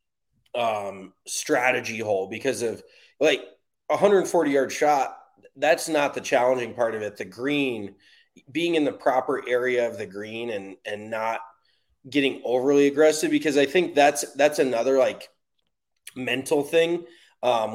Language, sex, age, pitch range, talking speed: English, male, 20-39, 120-150 Hz, 145 wpm